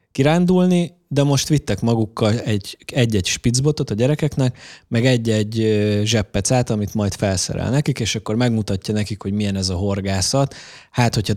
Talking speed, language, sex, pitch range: 150 wpm, Hungarian, male, 105-135 Hz